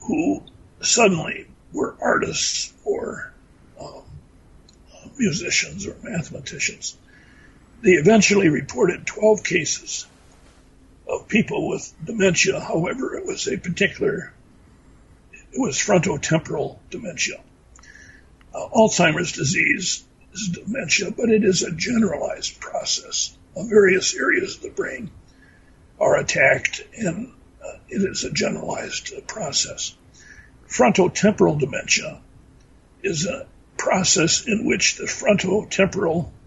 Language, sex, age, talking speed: English, male, 60-79, 105 wpm